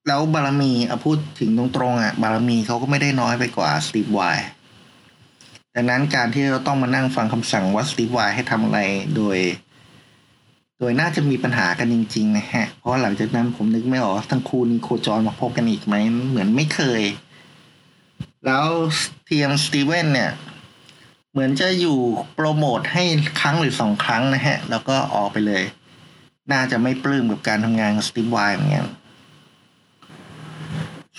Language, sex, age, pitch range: Thai, male, 20-39, 110-140 Hz